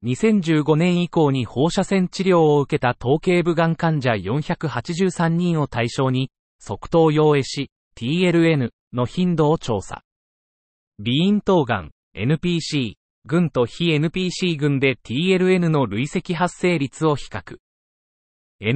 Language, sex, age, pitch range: Japanese, male, 30-49, 125-175 Hz